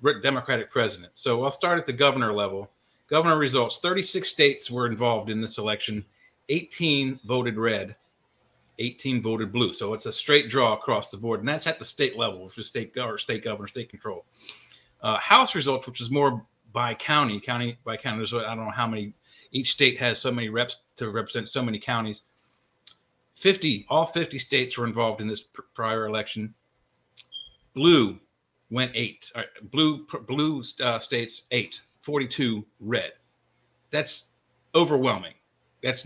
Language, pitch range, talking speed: English, 115-140 Hz, 160 wpm